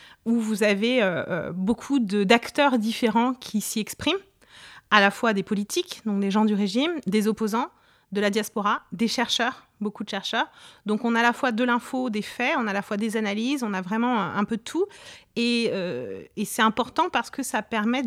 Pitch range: 195-245 Hz